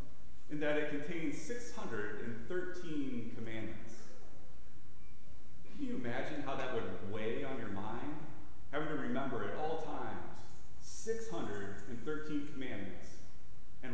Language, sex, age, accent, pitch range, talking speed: English, male, 30-49, American, 105-150 Hz, 110 wpm